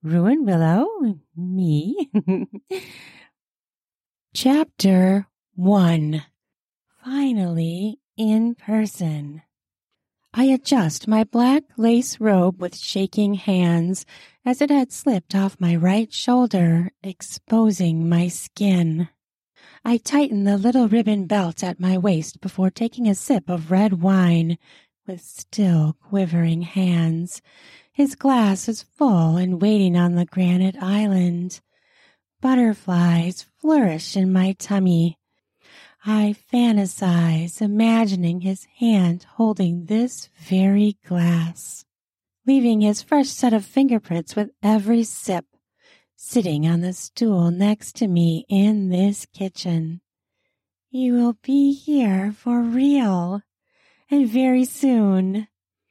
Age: 30-49